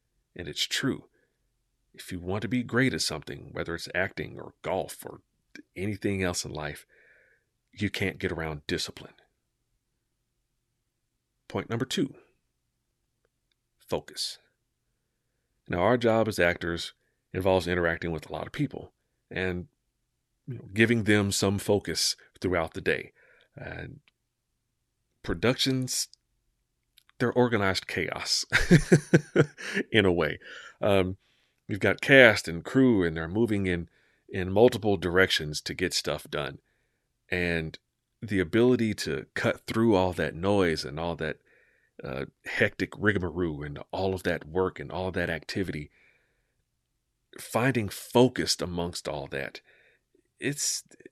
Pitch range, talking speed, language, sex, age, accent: 90-120 Hz, 125 wpm, English, male, 40-59, American